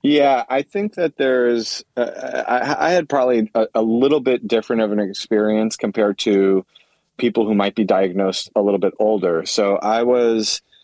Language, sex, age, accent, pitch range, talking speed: English, male, 30-49, American, 105-135 Hz, 175 wpm